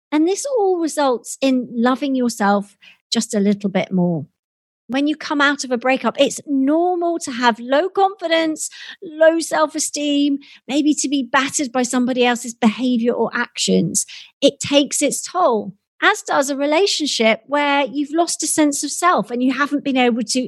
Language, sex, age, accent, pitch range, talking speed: English, female, 40-59, British, 235-310 Hz, 170 wpm